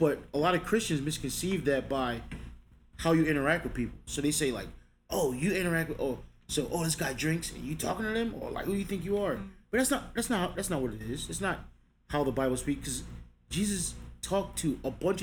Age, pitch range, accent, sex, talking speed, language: 30-49, 130-200 Hz, American, male, 245 wpm, English